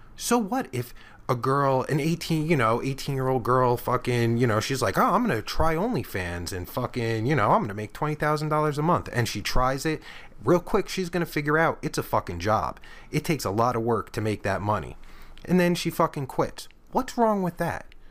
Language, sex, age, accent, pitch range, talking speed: English, male, 30-49, American, 105-150 Hz, 230 wpm